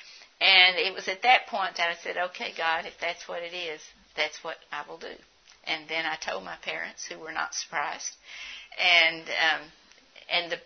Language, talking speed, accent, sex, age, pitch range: English, 195 wpm, American, female, 60-79, 165-190 Hz